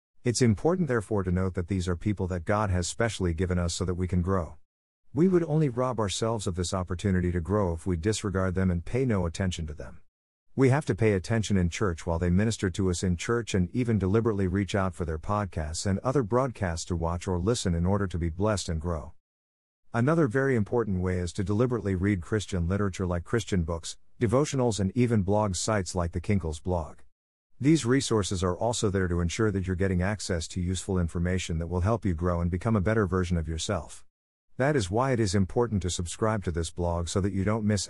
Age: 50-69